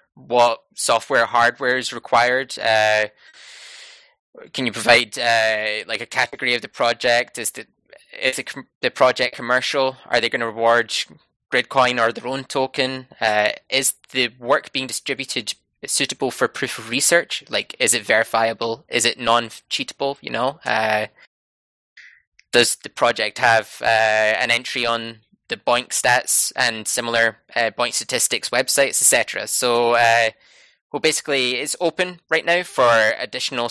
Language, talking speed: English, 150 wpm